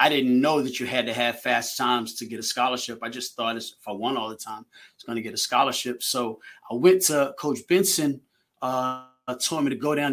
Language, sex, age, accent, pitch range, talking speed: English, male, 30-49, American, 120-145 Hz, 250 wpm